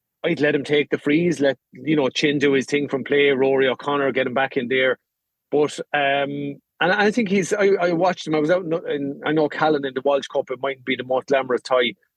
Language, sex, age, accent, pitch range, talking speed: English, male, 30-49, Irish, 130-160 Hz, 250 wpm